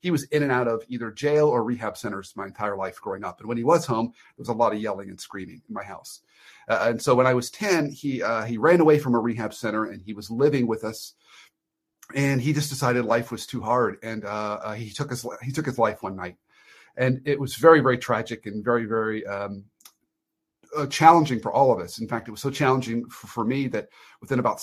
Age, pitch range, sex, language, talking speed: 40-59, 115-145 Hz, male, English, 250 wpm